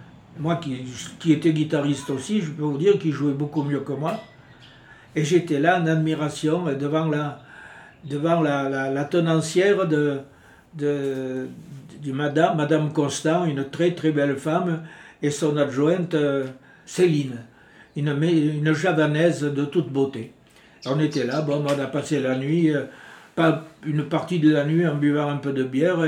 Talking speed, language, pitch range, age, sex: 165 wpm, French, 140-165 Hz, 60-79, male